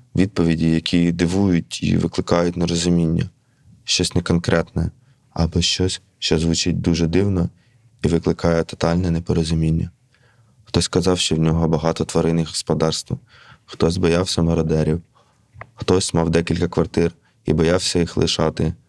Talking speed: 120 wpm